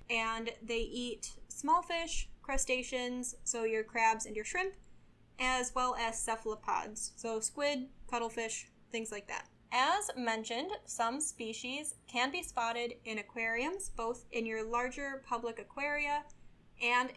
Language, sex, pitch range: English, female, 230-275 Hz